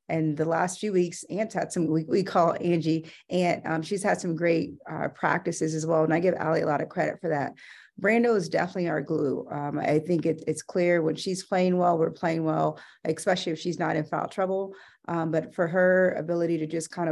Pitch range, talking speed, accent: 160-185 Hz, 230 wpm, American